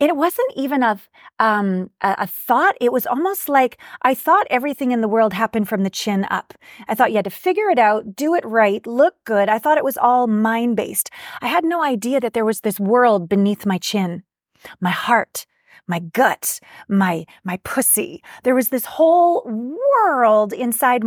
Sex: female